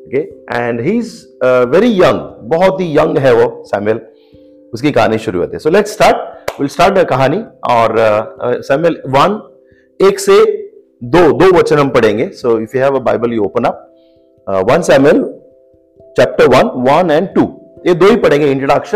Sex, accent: male, native